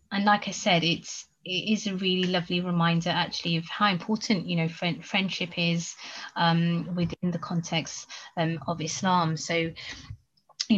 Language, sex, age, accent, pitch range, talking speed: English, female, 30-49, British, 165-190 Hz, 160 wpm